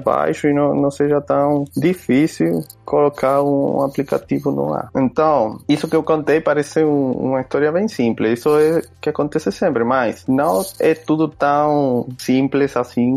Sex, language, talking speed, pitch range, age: male, Portuguese, 160 wpm, 130-180 Hz, 20-39